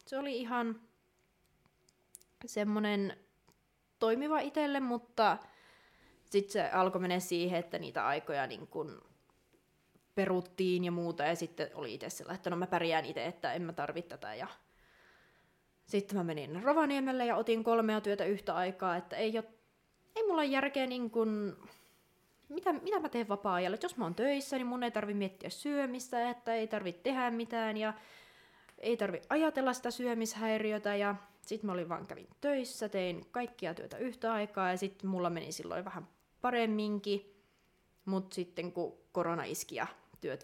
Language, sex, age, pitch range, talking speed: Finnish, female, 20-39, 180-235 Hz, 155 wpm